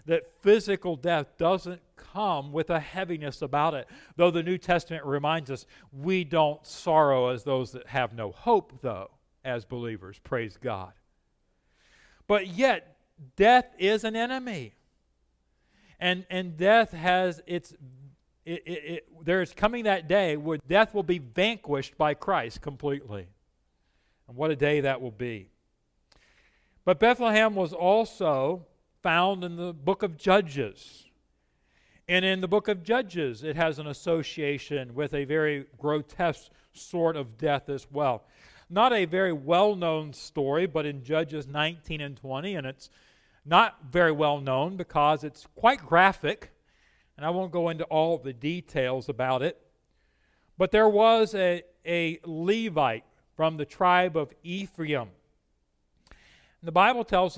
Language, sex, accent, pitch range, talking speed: English, male, American, 140-180 Hz, 140 wpm